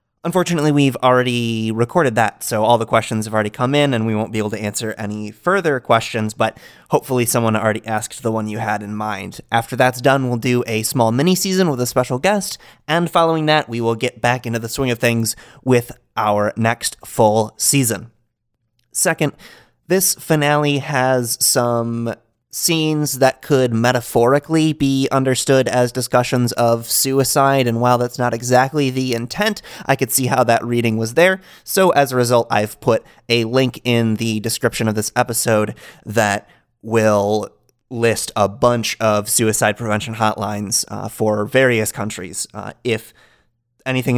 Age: 30-49